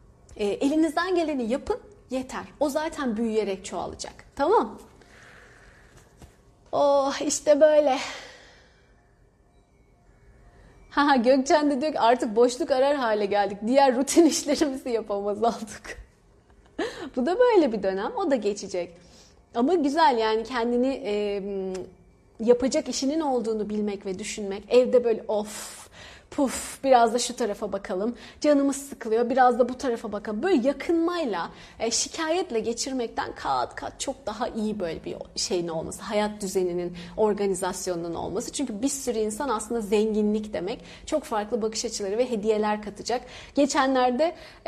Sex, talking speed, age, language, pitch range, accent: female, 125 wpm, 30-49, Turkish, 210-280 Hz, native